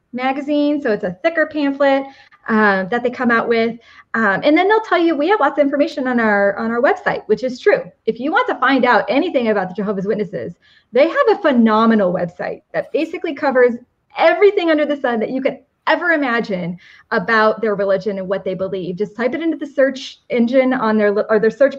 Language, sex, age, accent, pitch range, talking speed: English, female, 20-39, American, 225-310 Hz, 215 wpm